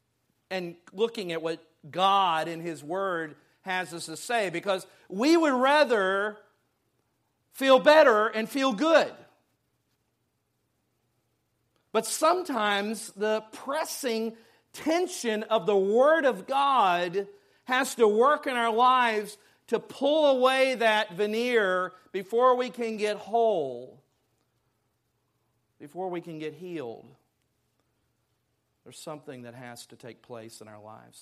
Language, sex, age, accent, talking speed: English, male, 50-69, American, 120 wpm